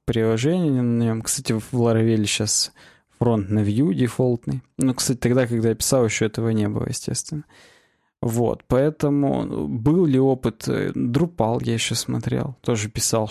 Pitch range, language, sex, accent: 110-140 Hz, Russian, male, native